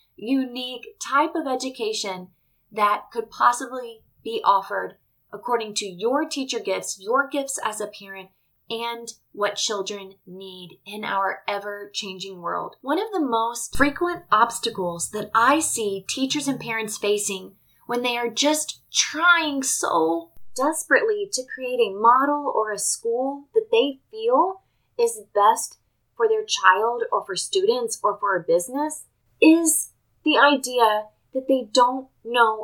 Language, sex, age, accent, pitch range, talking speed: English, female, 20-39, American, 210-320 Hz, 140 wpm